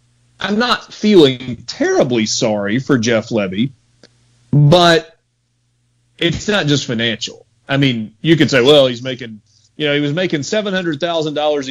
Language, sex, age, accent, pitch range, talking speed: English, male, 30-49, American, 120-150 Hz, 140 wpm